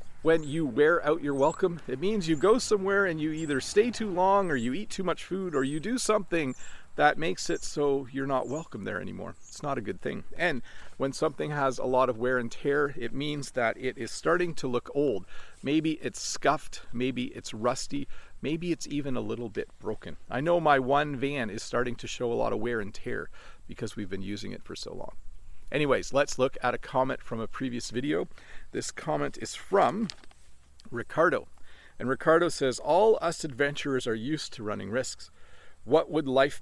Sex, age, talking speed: male, 40-59, 205 wpm